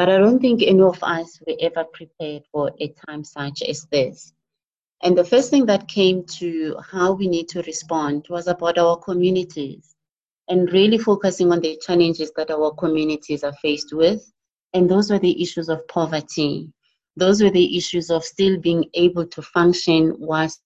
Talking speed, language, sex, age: 180 wpm, English, female, 30-49